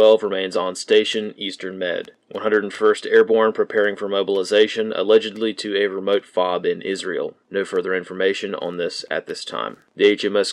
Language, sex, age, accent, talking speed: English, male, 30-49, American, 160 wpm